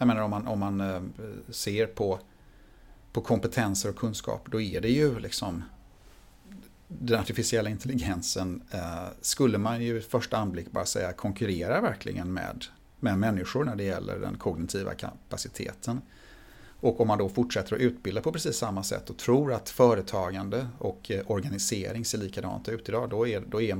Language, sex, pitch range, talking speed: Swedish, male, 100-120 Hz, 150 wpm